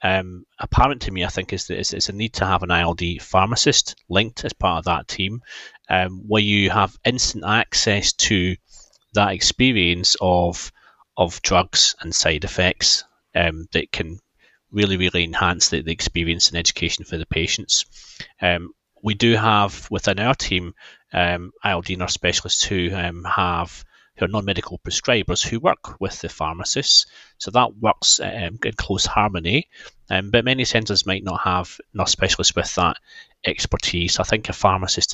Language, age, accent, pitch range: English, 30-49, British, 85-105 Hz